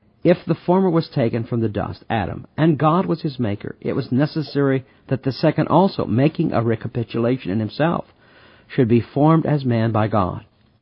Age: 50-69